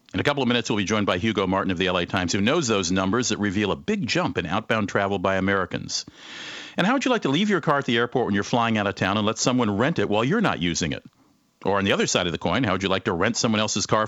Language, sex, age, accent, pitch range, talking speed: English, male, 50-69, American, 90-120 Hz, 315 wpm